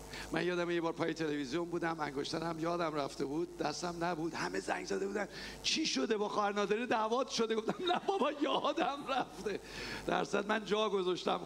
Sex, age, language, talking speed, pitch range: male, 50-69, Persian, 175 wpm, 160-205 Hz